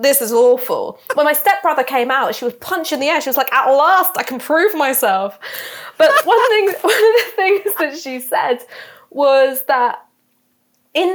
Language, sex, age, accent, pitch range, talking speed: English, female, 20-39, British, 200-295 Hz, 190 wpm